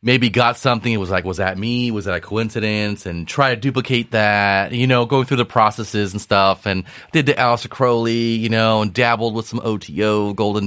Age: 30-49